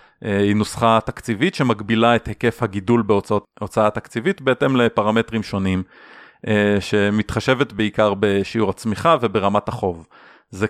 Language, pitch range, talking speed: Hebrew, 100-115 Hz, 105 wpm